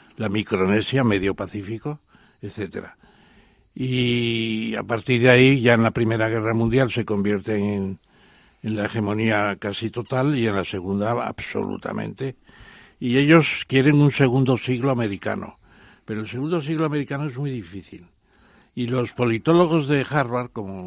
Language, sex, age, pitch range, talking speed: Spanish, male, 60-79, 105-130 Hz, 145 wpm